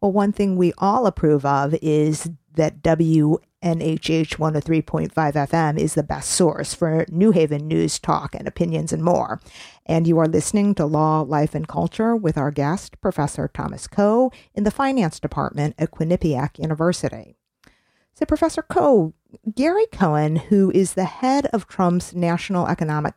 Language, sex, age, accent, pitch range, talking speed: English, female, 50-69, American, 155-190 Hz, 155 wpm